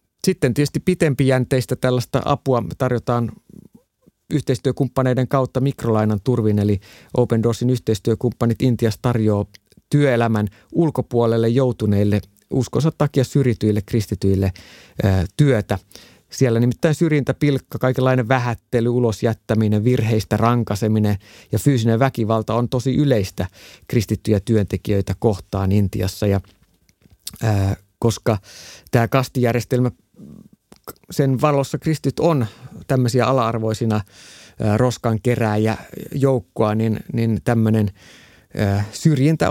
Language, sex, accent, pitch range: Finnish, male, native, 105-130 Hz